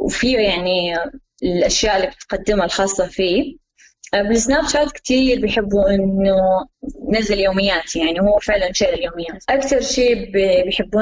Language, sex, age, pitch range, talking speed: Arabic, female, 20-39, 195-255 Hz, 120 wpm